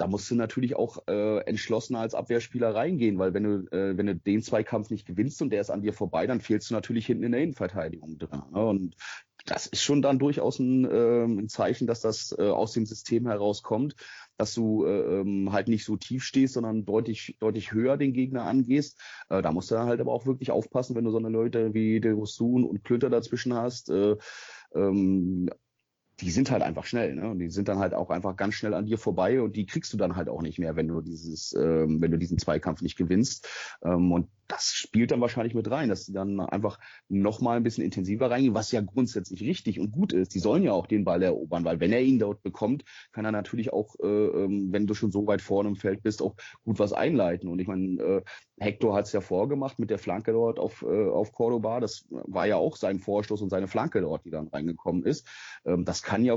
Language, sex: German, male